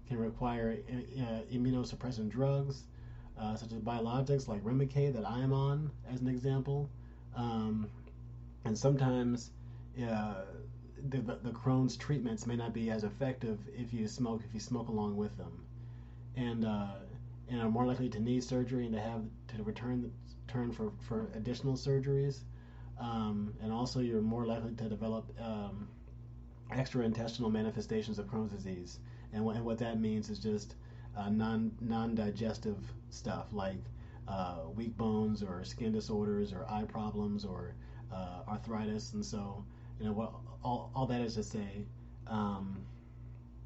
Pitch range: 105-120 Hz